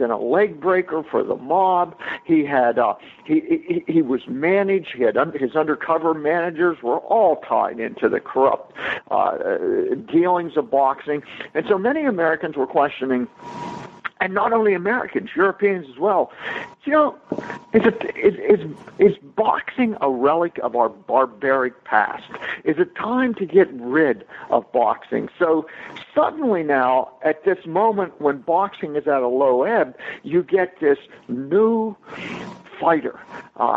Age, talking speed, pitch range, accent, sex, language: 50-69, 145 wpm, 150-215 Hz, American, male, English